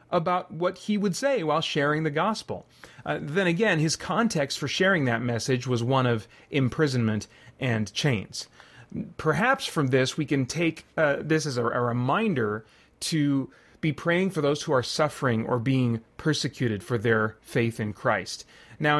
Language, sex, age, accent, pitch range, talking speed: English, male, 30-49, American, 120-160 Hz, 165 wpm